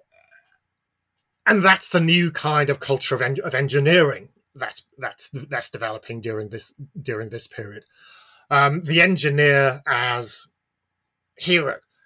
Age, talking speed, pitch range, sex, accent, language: 30-49, 125 wpm, 120-155 Hz, male, British, English